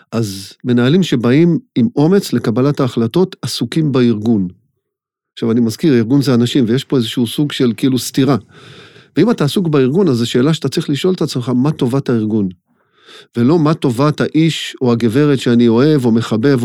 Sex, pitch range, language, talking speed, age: male, 120-150 Hz, Hebrew, 170 wpm, 40-59